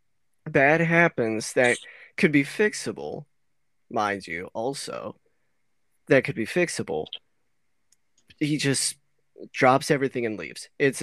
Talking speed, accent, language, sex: 110 wpm, American, English, male